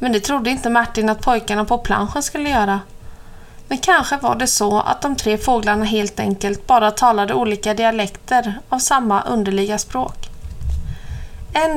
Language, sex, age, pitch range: Swedish, female, 30-49, 205-250 Hz